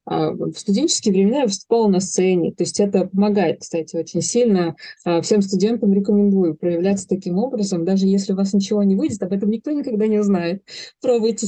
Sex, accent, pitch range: female, native, 180-215 Hz